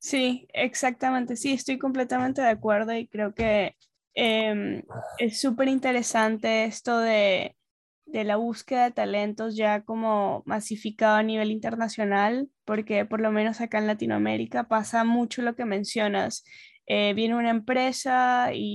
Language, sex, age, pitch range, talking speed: English, female, 10-29, 215-245 Hz, 140 wpm